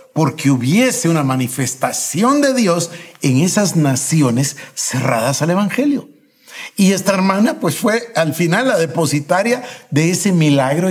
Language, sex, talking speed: Spanish, male, 130 wpm